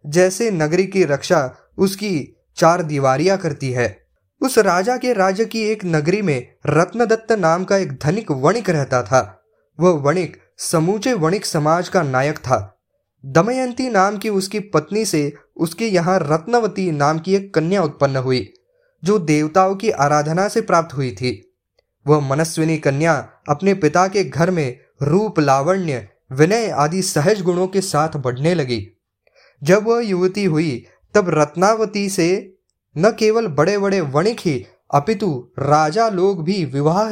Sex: male